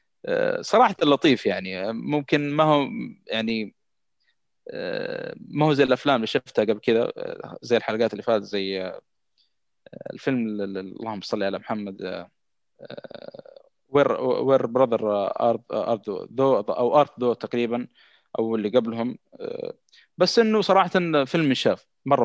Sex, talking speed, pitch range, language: male, 110 wpm, 115-150 Hz, Arabic